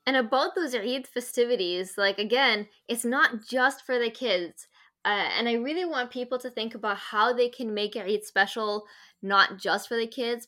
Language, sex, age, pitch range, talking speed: English, female, 10-29, 200-245 Hz, 190 wpm